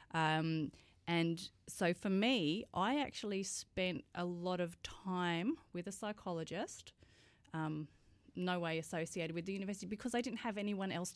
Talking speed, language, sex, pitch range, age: 150 wpm, English, female, 155-185 Hz, 30-49